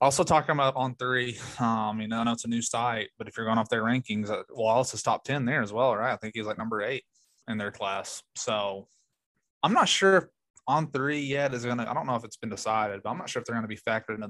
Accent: American